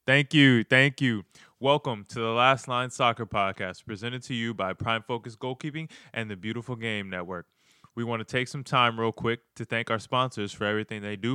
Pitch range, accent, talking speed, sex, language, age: 100-125 Hz, American, 205 wpm, male, English, 20-39